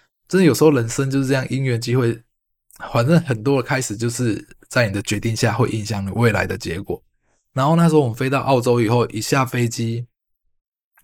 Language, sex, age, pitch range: Chinese, male, 20-39, 115-145 Hz